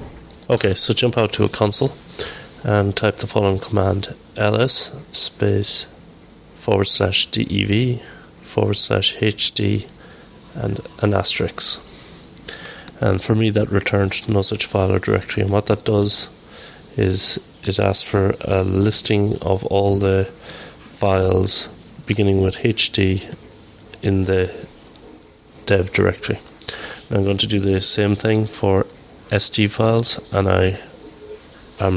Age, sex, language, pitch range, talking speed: 30-49, male, English, 95-110 Hz, 125 wpm